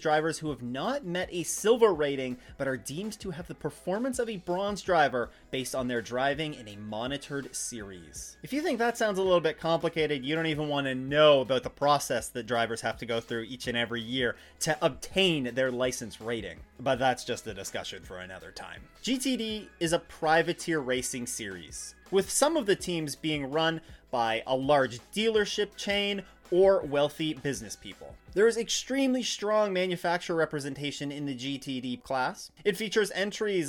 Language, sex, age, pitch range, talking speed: English, male, 30-49, 130-195 Hz, 185 wpm